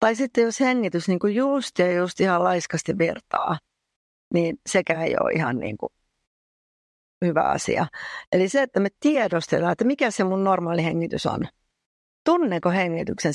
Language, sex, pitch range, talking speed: Finnish, female, 180-245 Hz, 150 wpm